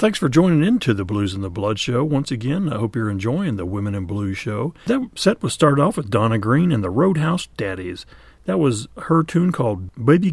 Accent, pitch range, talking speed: American, 110-155 Hz, 230 wpm